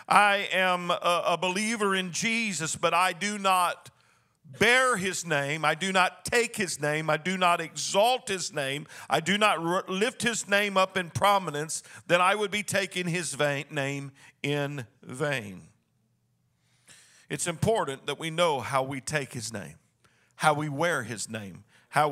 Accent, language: American, English